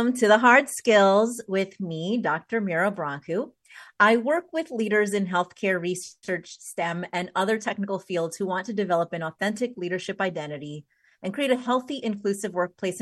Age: 30-49